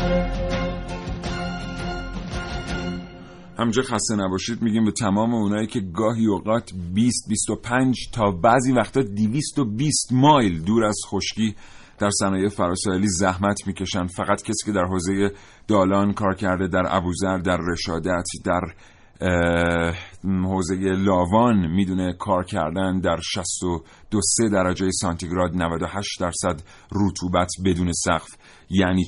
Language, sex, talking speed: Persian, male, 120 wpm